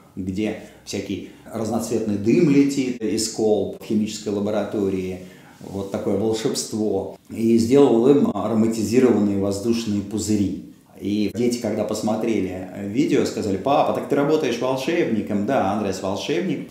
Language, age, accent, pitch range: Russian, 30-49, native, 105-130 Hz